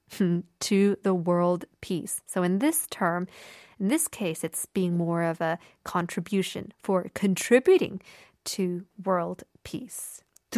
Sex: female